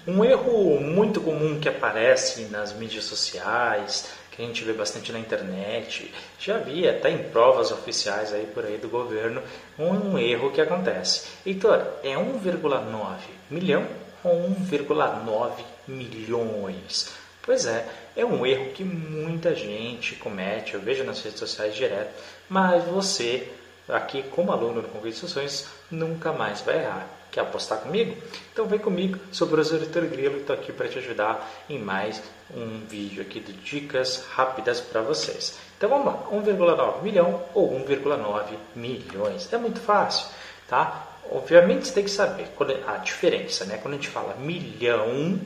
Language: Portuguese